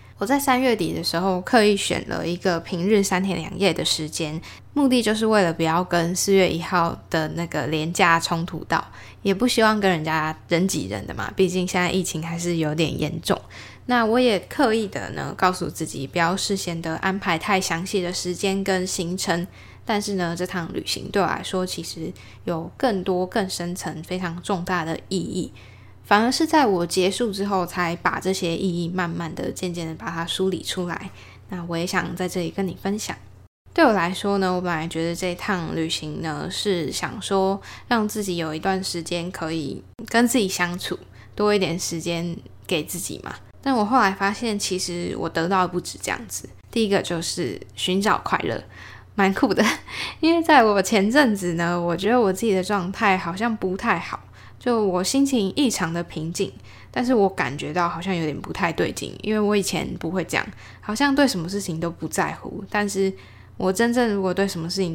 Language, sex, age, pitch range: Chinese, female, 10-29, 170-200 Hz